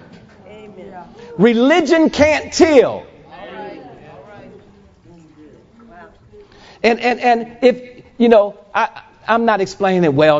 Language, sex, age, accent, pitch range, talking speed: English, male, 40-59, American, 220-315 Hz, 85 wpm